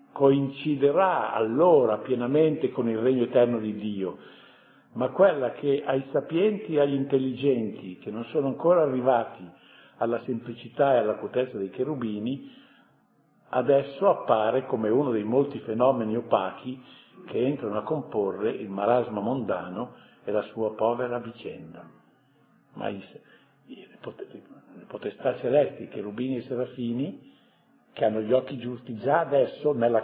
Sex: male